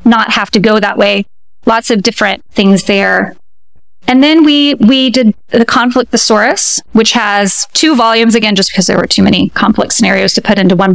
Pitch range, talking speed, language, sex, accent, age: 210-255 Hz, 195 wpm, English, female, American, 30-49